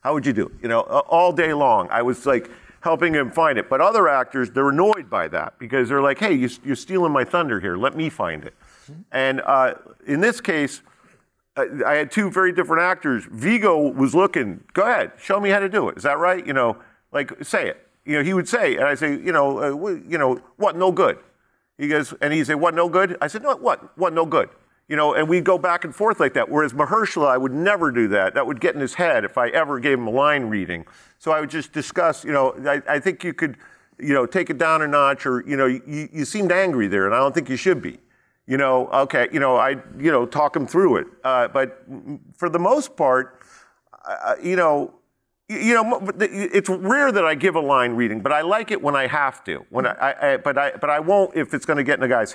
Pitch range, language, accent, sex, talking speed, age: 135-180 Hz, English, American, male, 255 wpm, 50-69